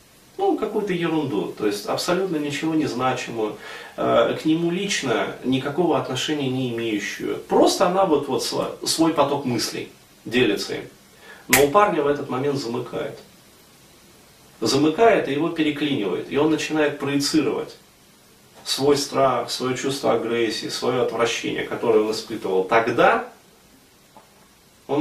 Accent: native